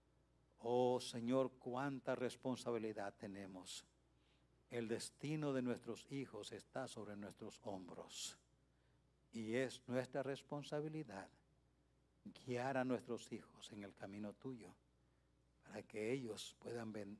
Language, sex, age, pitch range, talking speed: English, male, 60-79, 100-125 Hz, 105 wpm